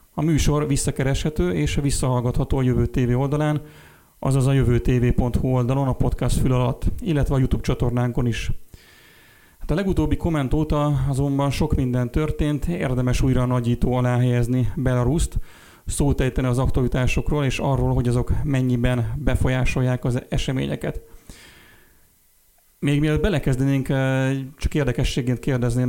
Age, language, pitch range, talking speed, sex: 30-49, Hungarian, 120-135 Hz, 125 wpm, male